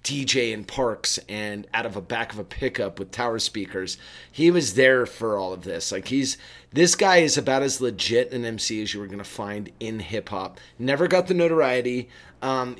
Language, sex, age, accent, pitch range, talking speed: English, male, 30-49, American, 105-135 Hz, 210 wpm